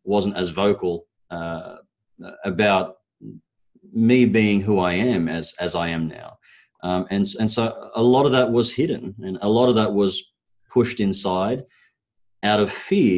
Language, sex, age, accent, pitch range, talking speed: English, male, 30-49, Australian, 90-110 Hz, 165 wpm